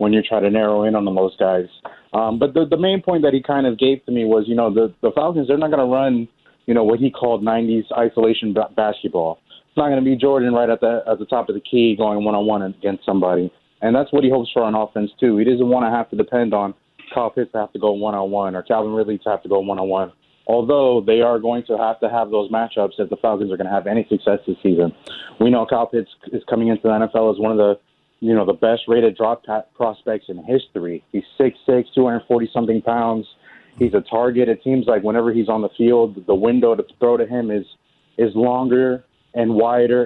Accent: American